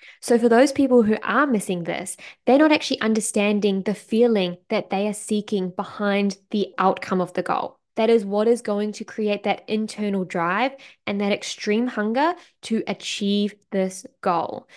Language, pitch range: English, 190-245 Hz